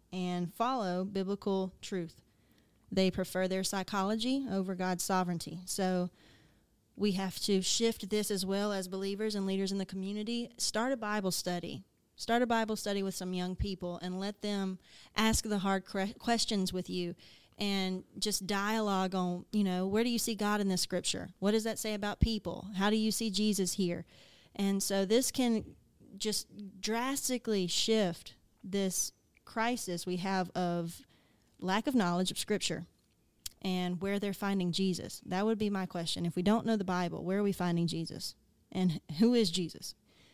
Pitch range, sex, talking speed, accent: 185-220 Hz, female, 170 wpm, American